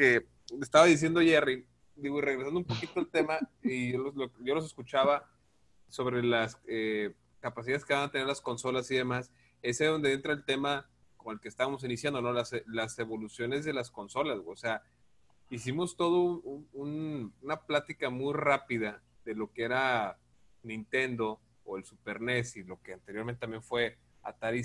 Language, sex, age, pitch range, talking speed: Spanish, male, 30-49, 115-135 Hz, 180 wpm